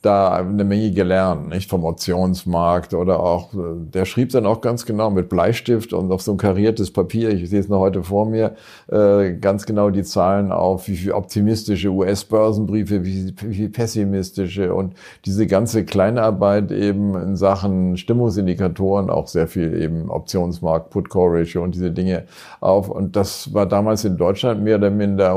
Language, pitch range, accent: German, 90-105 Hz, German